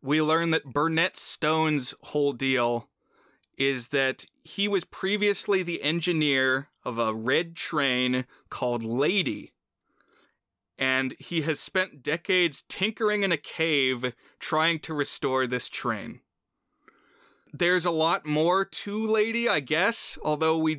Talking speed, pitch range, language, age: 125 wpm, 135-180 Hz, English, 30-49